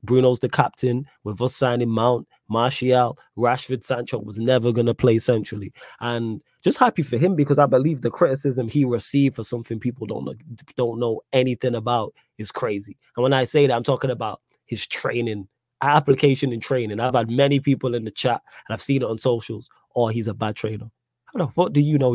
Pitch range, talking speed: 120-155 Hz, 210 wpm